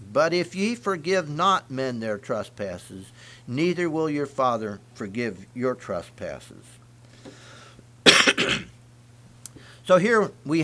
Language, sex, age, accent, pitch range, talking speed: English, male, 60-79, American, 120-175 Hz, 100 wpm